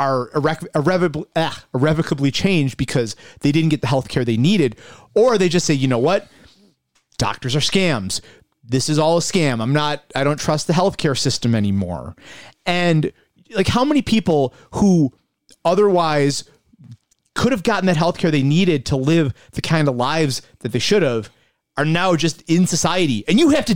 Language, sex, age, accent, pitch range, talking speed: English, male, 30-49, American, 130-185 Hz, 180 wpm